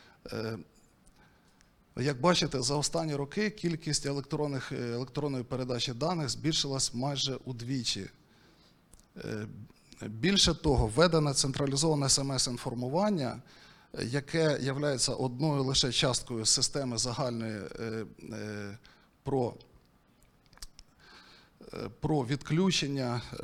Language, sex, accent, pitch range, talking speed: Ukrainian, male, native, 120-150 Hz, 70 wpm